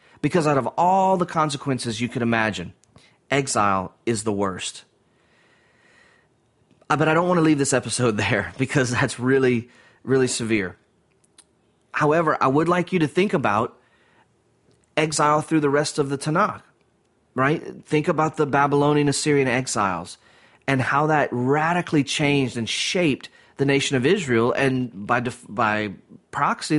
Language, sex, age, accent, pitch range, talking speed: English, male, 30-49, American, 120-155 Hz, 145 wpm